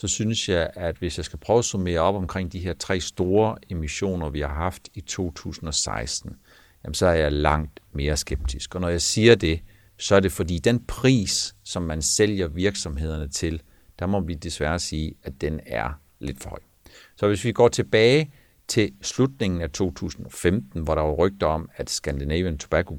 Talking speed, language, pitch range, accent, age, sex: 190 wpm, Danish, 75-100 Hz, native, 60-79, male